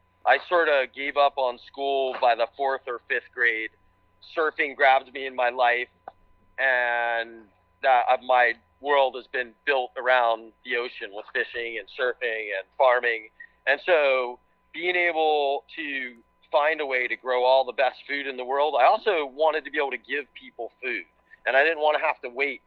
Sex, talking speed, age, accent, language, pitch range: male, 185 wpm, 40-59, American, English, 125-155 Hz